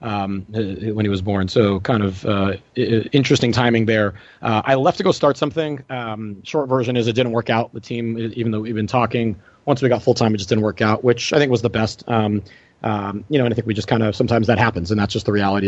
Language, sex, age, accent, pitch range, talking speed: English, male, 30-49, American, 110-120 Hz, 265 wpm